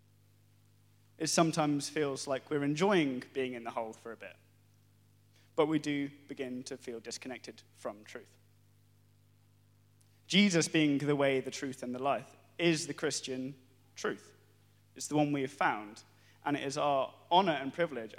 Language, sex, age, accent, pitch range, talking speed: English, male, 20-39, British, 105-145 Hz, 160 wpm